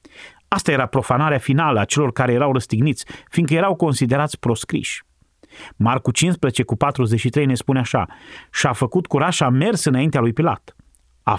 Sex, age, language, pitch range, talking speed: male, 30-49, Romanian, 130-170 Hz, 155 wpm